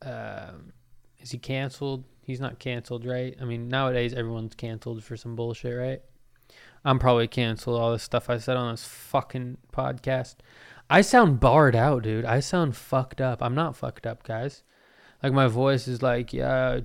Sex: male